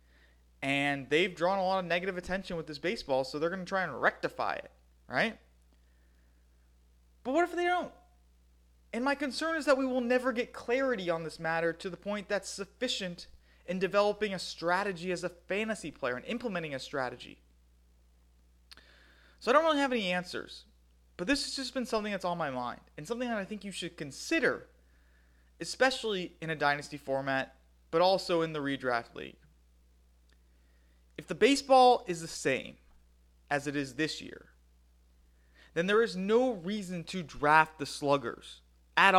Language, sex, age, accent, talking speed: English, male, 30-49, American, 170 wpm